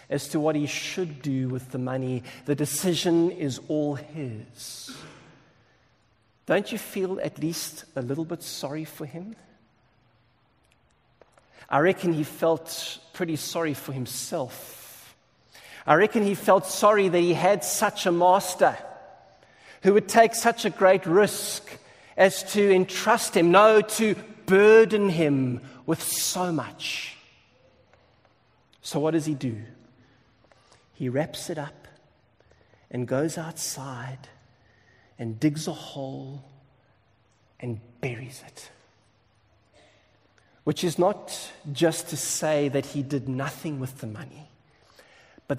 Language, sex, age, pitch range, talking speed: English, male, 50-69, 125-165 Hz, 125 wpm